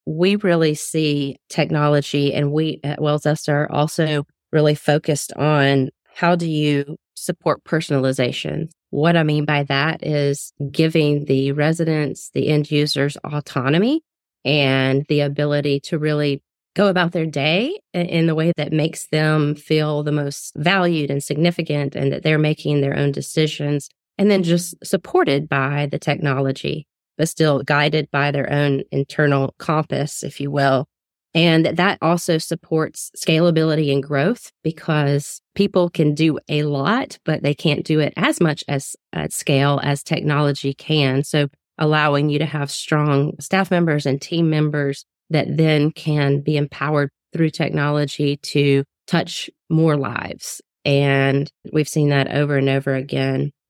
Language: English